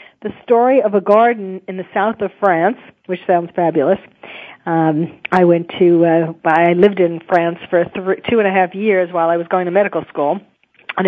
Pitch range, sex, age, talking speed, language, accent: 190-230 Hz, female, 40-59, 200 wpm, English, American